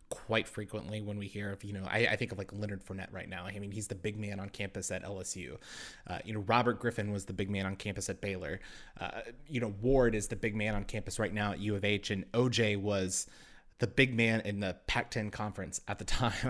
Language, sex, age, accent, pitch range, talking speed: English, male, 20-39, American, 100-115 Hz, 250 wpm